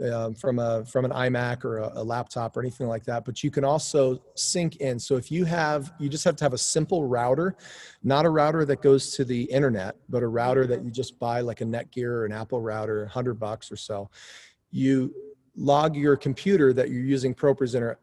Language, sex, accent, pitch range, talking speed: English, male, American, 120-140 Hz, 225 wpm